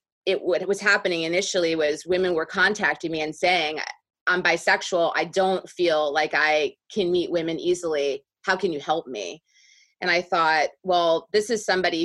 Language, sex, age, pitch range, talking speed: English, female, 30-49, 160-190 Hz, 175 wpm